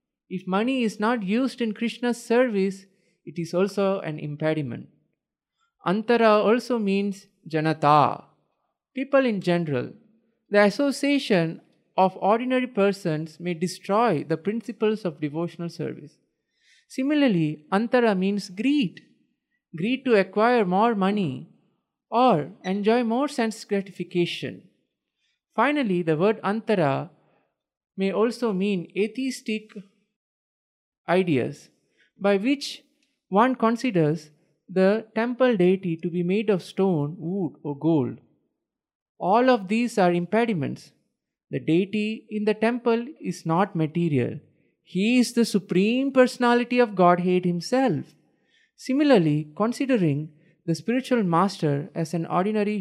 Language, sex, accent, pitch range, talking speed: English, male, Indian, 170-230 Hz, 110 wpm